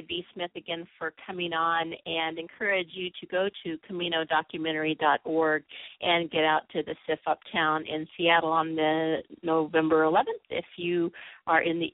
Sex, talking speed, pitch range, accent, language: female, 155 wpm, 160-195 Hz, American, English